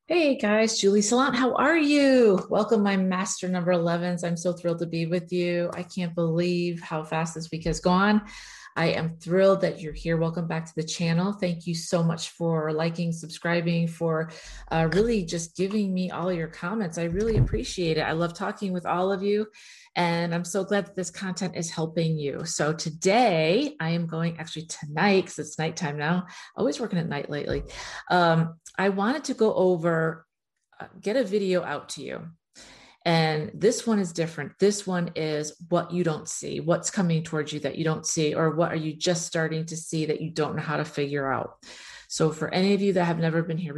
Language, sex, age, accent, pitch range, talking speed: English, female, 40-59, American, 160-185 Hz, 205 wpm